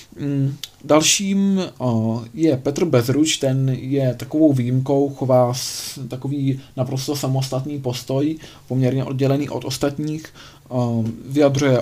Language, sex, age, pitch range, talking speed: Czech, male, 20-39, 120-140 Hz, 95 wpm